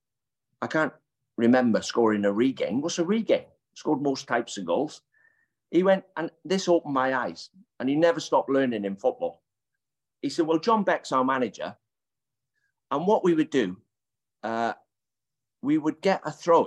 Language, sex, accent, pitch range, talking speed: English, male, British, 120-160 Hz, 165 wpm